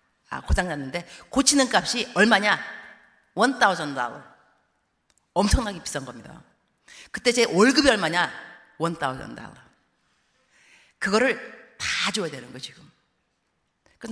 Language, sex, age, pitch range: Korean, female, 40-59, 170-245 Hz